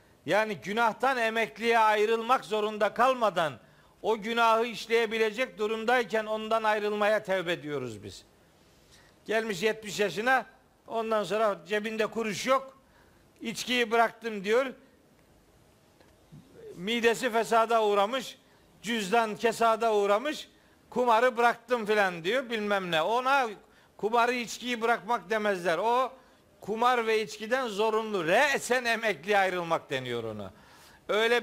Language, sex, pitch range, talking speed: Turkish, male, 205-240 Hz, 105 wpm